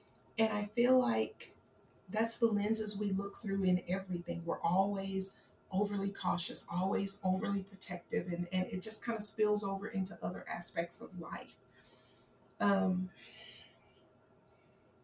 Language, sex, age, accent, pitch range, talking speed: English, female, 40-59, American, 160-195 Hz, 130 wpm